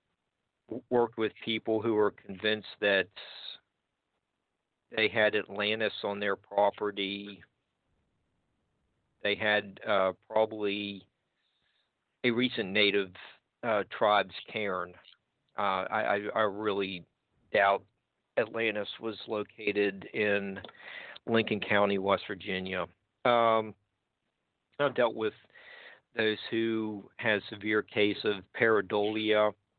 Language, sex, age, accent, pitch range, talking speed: English, male, 50-69, American, 105-120 Hz, 95 wpm